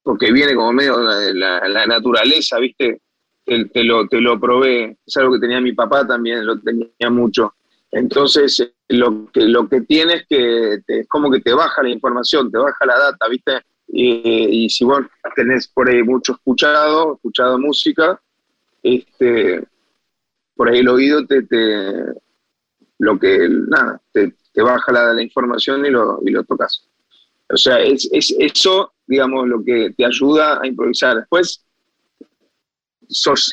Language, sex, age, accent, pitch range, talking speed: Spanish, male, 30-49, Argentinian, 120-145 Hz, 155 wpm